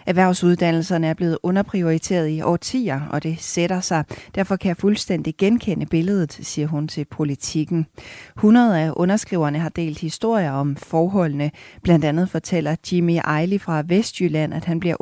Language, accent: Danish, native